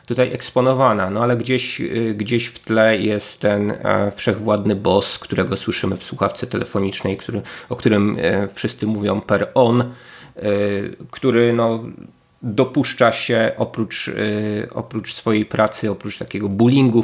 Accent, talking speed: native, 115 wpm